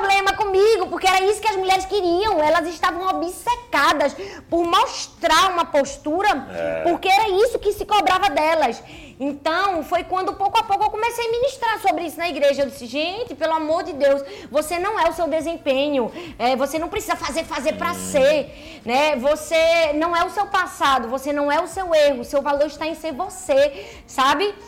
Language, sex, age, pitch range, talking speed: Portuguese, female, 20-39, 290-370 Hz, 185 wpm